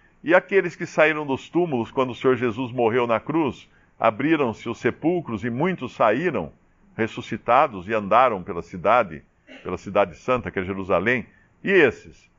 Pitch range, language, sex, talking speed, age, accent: 110-155 Hz, Portuguese, male, 155 wpm, 50-69, Brazilian